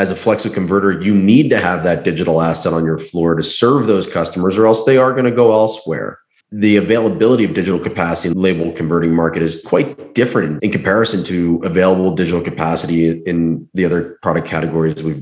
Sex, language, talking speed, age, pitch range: male, English, 195 wpm, 30-49, 90-110 Hz